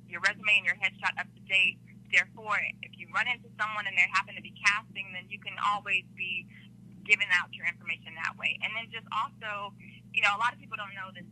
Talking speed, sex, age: 235 wpm, female, 20-39